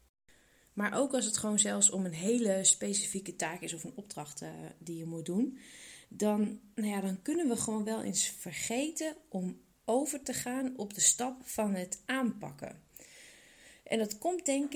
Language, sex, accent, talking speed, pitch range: Dutch, female, Dutch, 170 wpm, 190-220 Hz